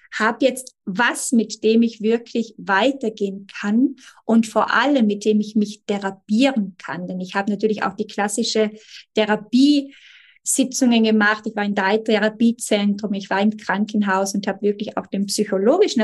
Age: 20-39